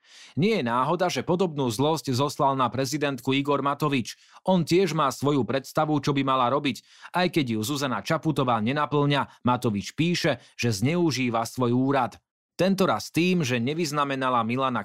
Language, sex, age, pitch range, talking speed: Slovak, male, 30-49, 120-155 Hz, 150 wpm